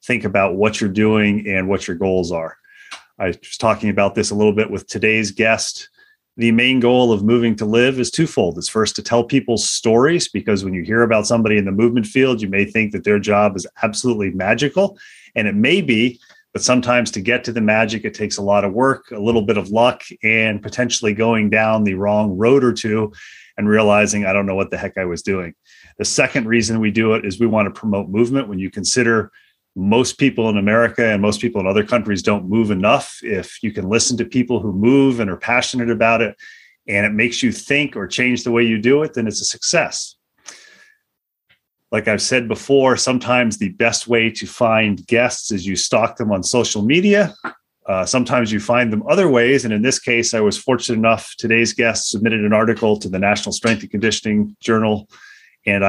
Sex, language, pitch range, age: male, English, 105-120 Hz, 30-49